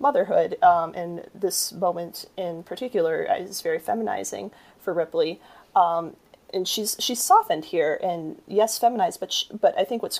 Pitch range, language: 180-275 Hz, English